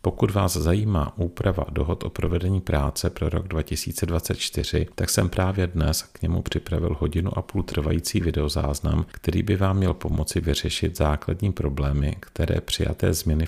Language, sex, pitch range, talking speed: Czech, male, 75-95 Hz, 150 wpm